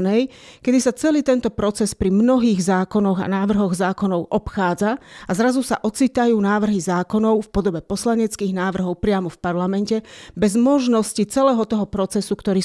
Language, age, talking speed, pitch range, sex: Slovak, 40-59, 145 wpm, 195-225 Hz, female